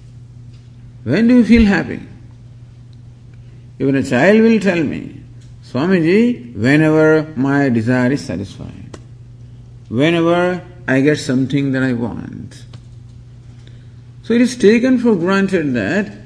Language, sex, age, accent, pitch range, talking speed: English, male, 50-69, Indian, 120-170 Hz, 115 wpm